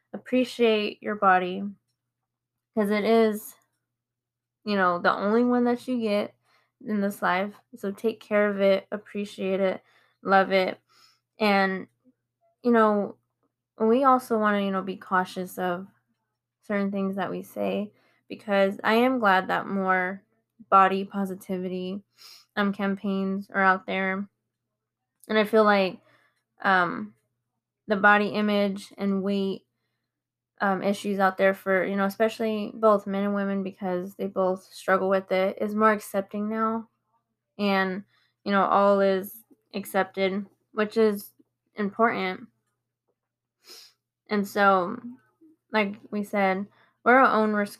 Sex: female